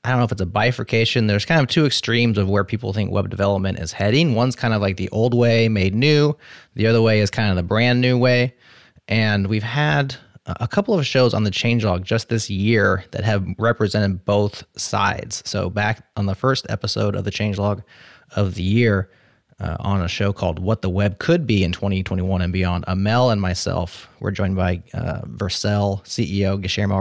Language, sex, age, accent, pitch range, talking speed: English, male, 30-49, American, 95-125 Hz, 205 wpm